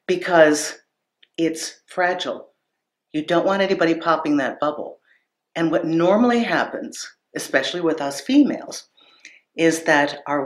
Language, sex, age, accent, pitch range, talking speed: English, female, 50-69, American, 155-210 Hz, 120 wpm